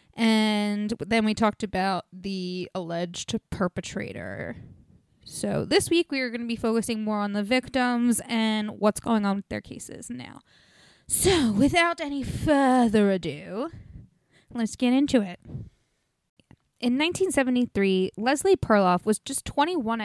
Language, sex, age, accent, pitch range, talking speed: English, female, 10-29, American, 195-260 Hz, 135 wpm